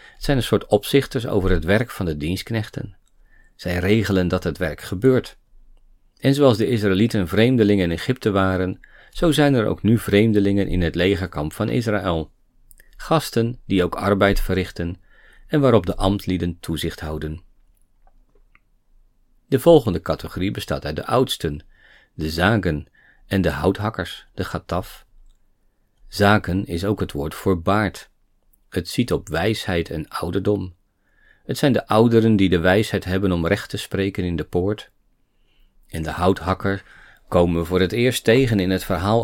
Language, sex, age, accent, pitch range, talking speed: Dutch, male, 40-59, Dutch, 90-110 Hz, 155 wpm